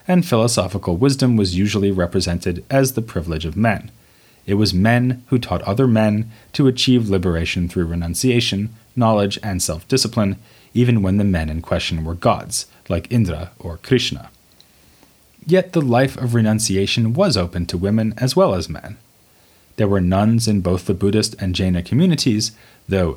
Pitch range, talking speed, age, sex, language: 90-120 Hz, 160 wpm, 30-49, male, English